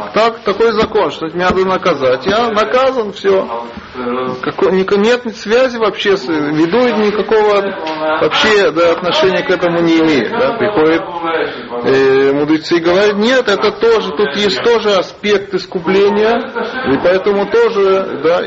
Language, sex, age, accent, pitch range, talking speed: Russian, male, 30-49, native, 160-210 Hz, 140 wpm